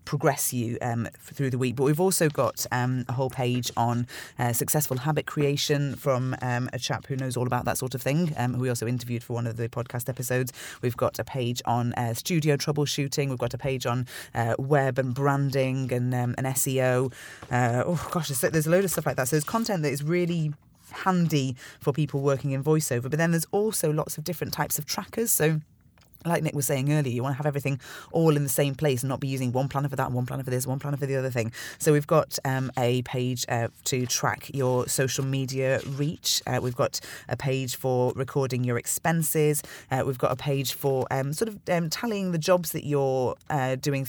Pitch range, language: 125-150 Hz, English